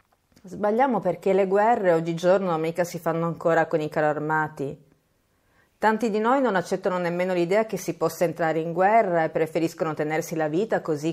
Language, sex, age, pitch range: Italian, female, 40-59, 165-210 Hz